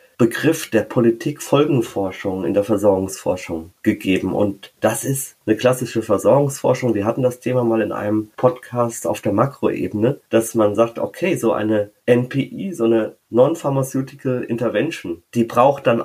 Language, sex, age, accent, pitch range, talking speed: German, male, 30-49, German, 105-125 Hz, 140 wpm